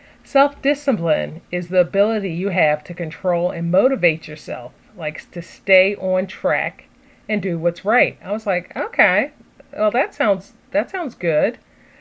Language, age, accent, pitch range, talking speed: English, 40-59, American, 165-210 Hz, 150 wpm